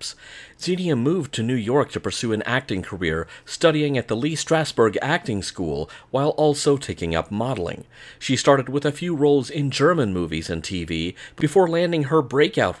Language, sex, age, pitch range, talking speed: English, male, 40-59, 95-150 Hz, 175 wpm